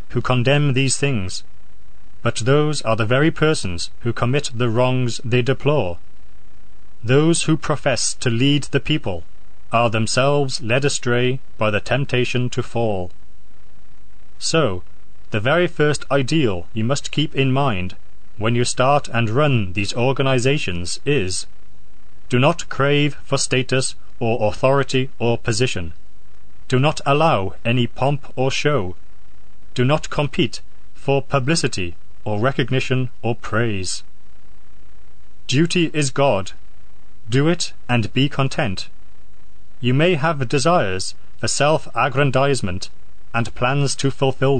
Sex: male